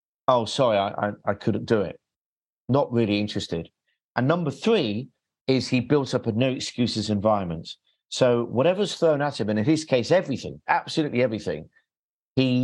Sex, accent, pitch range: male, British, 110-135 Hz